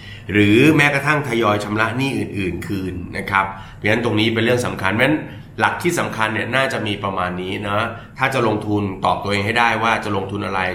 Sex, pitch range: male, 100-125 Hz